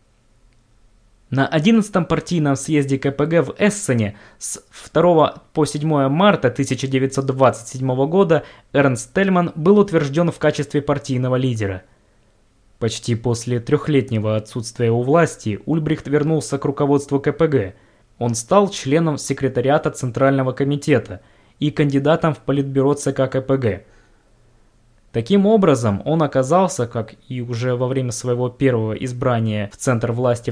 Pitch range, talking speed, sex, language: 115-150 Hz, 120 wpm, male, Russian